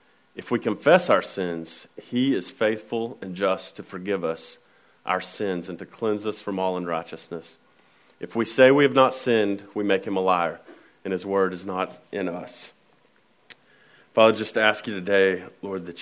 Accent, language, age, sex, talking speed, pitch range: American, English, 40-59, male, 180 wpm, 95-115 Hz